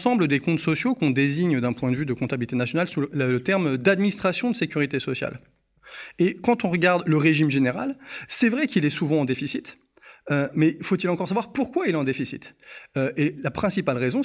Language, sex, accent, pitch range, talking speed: French, male, French, 140-190 Hz, 205 wpm